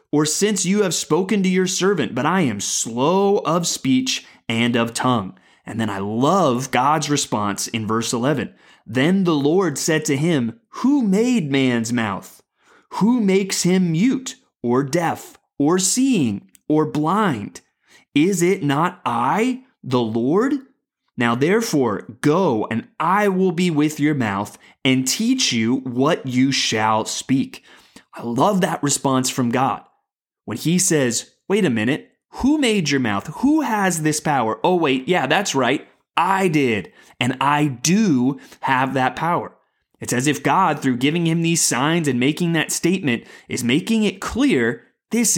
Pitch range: 130-195 Hz